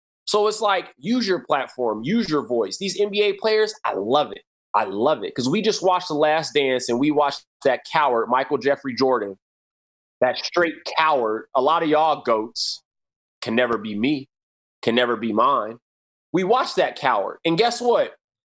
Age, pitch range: 30-49, 155-255 Hz